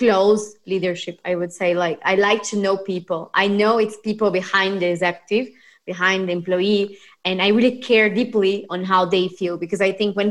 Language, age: English, 20-39